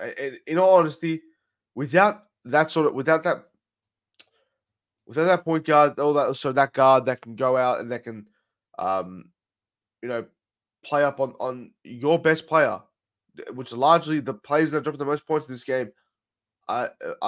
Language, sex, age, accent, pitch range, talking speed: English, male, 20-39, Australian, 125-160 Hz, 165 wpm